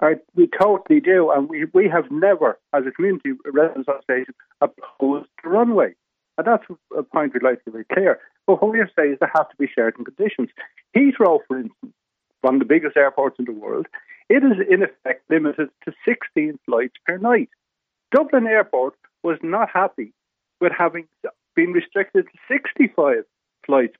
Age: 60-79